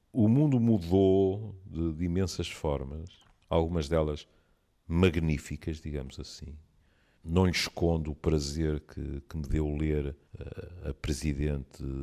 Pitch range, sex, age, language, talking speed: 75-105 Hz, male, 50-69, Portuguese, 120 wpm